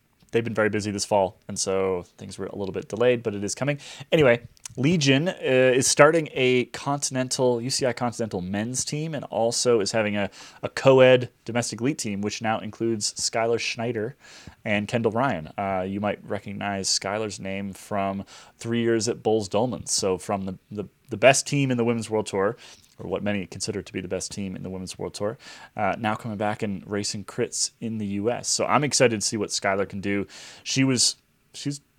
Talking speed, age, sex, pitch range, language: 200 wpm, 20-39, male, 100-125 Hz, English